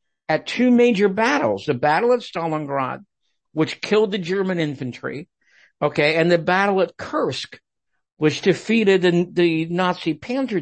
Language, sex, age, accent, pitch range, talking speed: English, male, 60-79, American, 165-240 Hz, 140 wpm